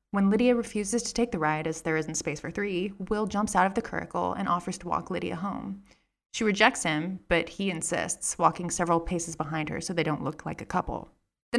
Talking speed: 230 wpm